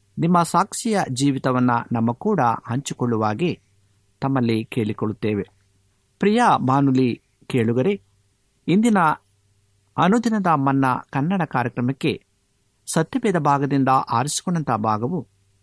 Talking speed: 75 wpm